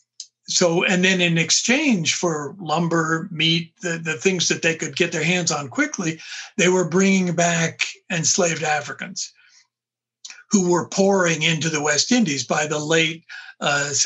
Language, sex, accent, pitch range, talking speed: English, male, American, 150-180 Hz, 155 wpm